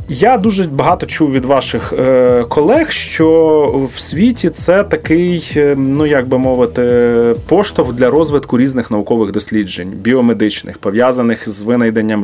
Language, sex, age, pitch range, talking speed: Ukrainian, male, 30-49, 115-145 Hz, 125 wpm